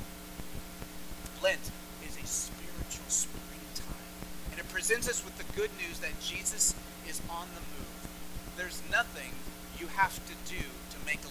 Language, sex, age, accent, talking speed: English, male, 40-59, American, 145 wpm